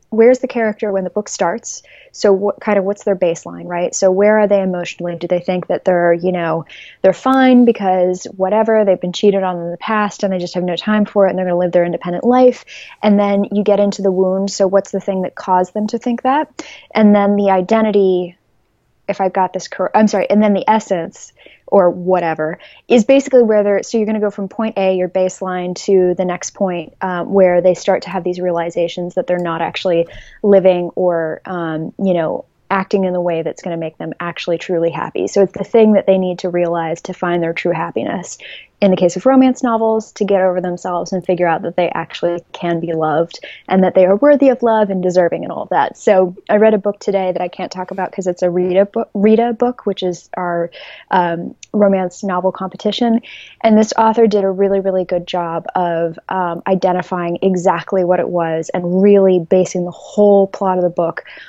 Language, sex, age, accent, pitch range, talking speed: English, female, 20-39, American, 175-205 Hz, 225 wpm